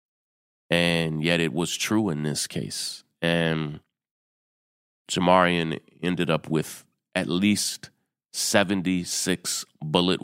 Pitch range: 80-95 Hz